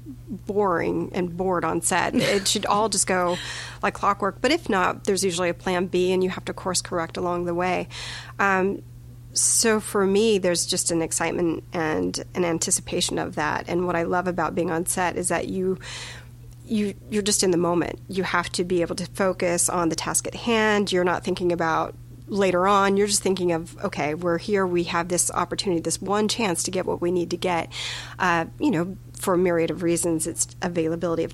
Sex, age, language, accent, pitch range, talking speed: female, 30-49, English, American, 165-190 Hz, 210 wpm